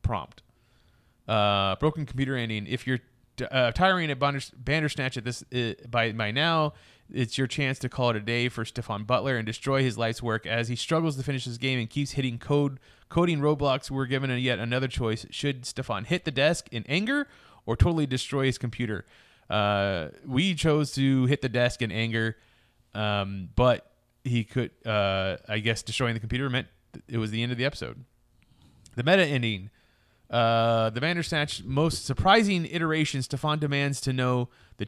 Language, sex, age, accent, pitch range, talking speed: English, male, 30-49, American, 115-145 Hz, 180 wpm